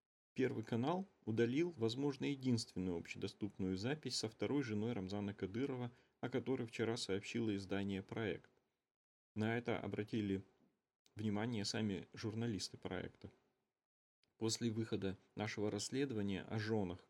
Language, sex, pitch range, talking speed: Russian, male, 100-120 Hz, 110 wpm